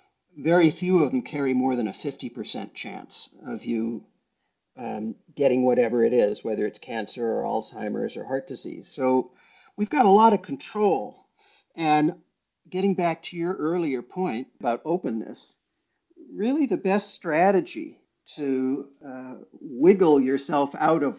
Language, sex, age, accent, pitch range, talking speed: English, male, 50-69, American, 140-210 Hz, 145 wpm